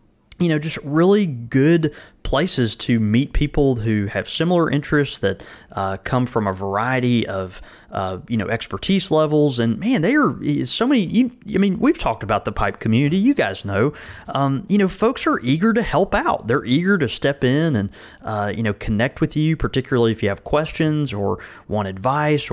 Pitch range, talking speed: 105-145 Hz, 185 wpm